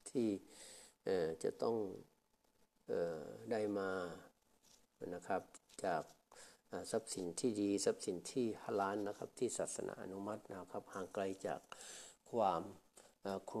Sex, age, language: male, 60-79, Thai